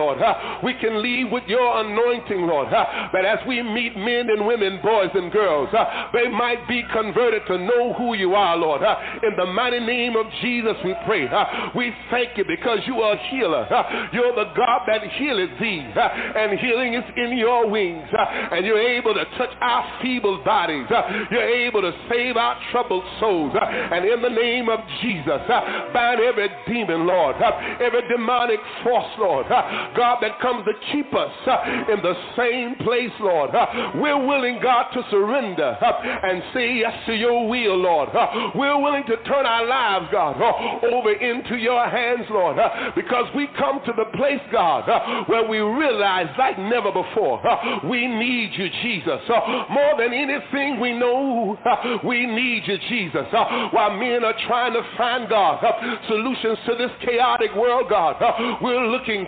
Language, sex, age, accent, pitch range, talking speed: English, male, 60-79, American, 215-245 Hz, 175 wpm